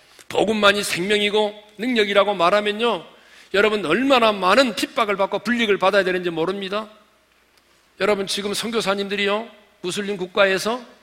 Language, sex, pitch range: Korean, male, 205-265 Hz